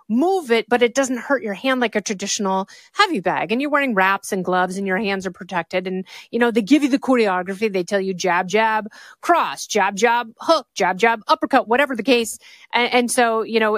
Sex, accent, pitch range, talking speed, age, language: female, American, 205-255 Hz, 225 wpm, 30-49, English